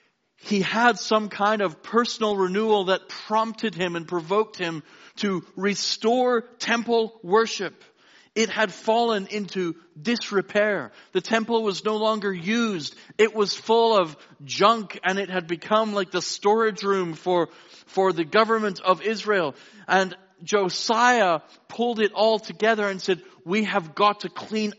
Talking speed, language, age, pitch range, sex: 145 wpm, English, 40-59, 185-220 Hz, male